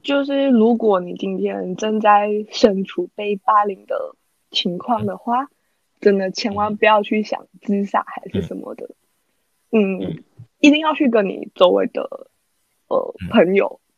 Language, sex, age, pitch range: Chinese, female, 20-39, 195-250 Hz